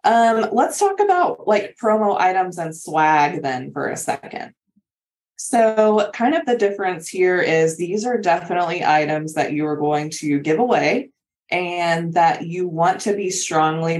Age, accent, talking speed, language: 20-39, American, 165 wpm, English